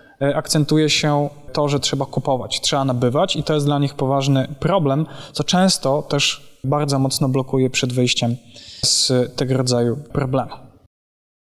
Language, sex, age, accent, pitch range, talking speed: Polish, male, 20-39, native, 135-160 Hz, 140 wpm